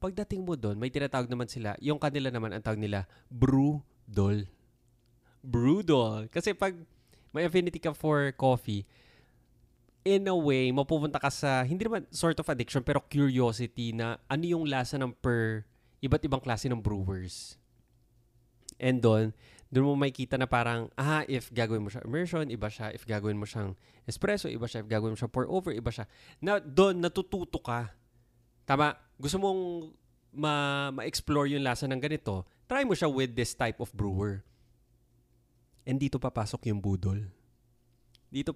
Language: Filipino